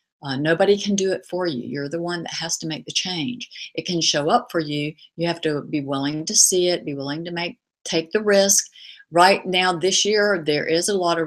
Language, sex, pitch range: English, female, 150-200 Hz